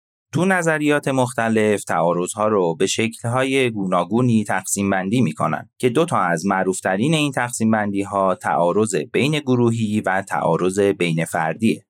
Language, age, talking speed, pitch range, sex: Persian, 30-49, 145 wpm, 95-125 Hz, male